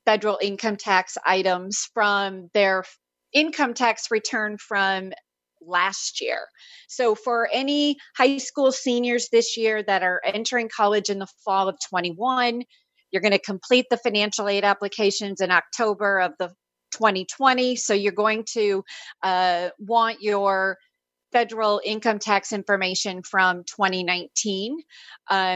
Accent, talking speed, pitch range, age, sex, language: American, 130 wpm, 190-230 Hz, 30-49, female, English